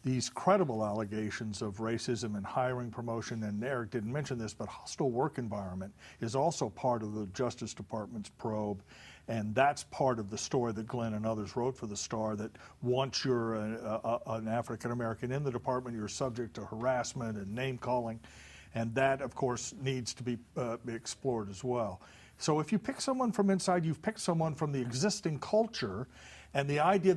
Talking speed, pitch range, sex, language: 190 wpm, 115-160 Hz, male, English